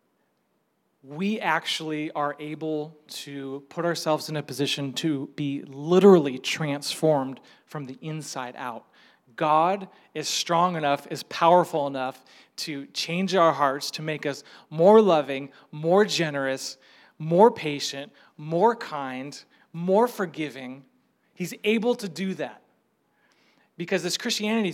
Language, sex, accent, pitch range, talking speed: English, male, American, 145-190 Hz, 120 wpm